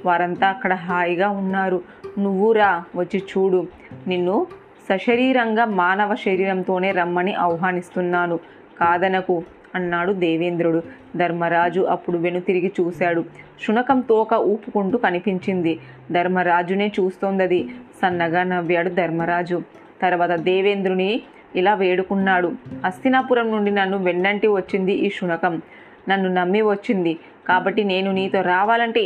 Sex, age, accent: female, 20-39, native